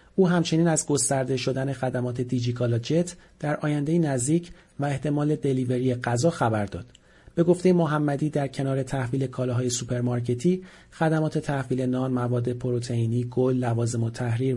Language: Persian